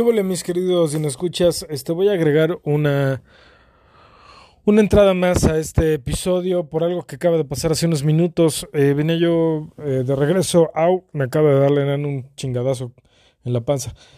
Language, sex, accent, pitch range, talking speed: Spanish, male, Mexican, 130-170 Hz, 180 wpm